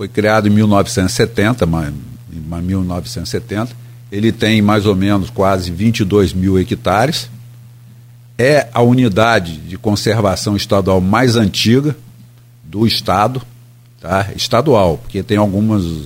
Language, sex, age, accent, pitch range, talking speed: Portuguese, male, 50-69, Brazilian, 110-130 Hz, 110 wpm